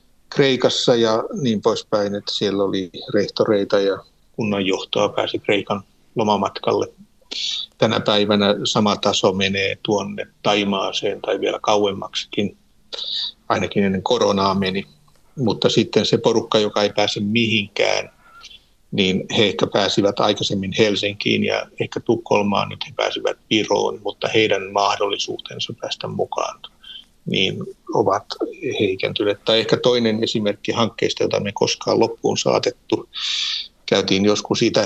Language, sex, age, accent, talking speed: Finnish, male, 60-79, native, 120 wpm